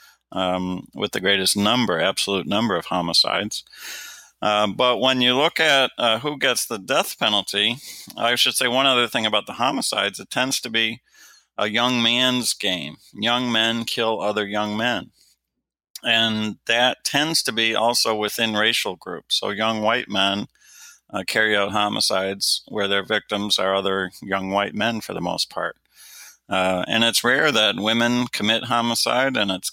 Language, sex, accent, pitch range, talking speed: English, male, American, 100-115 Hz, 170 wpm